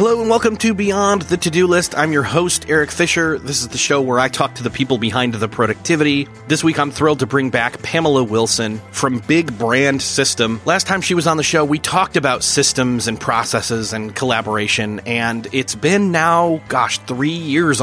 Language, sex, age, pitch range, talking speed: English, male, 30-49, 125-165 Hz, 205 wpm